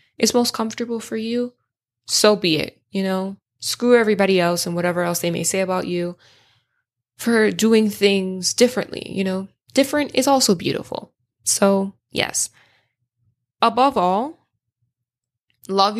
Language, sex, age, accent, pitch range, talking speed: English, female, 10-29, American, 125-205 Hz, 135 wpm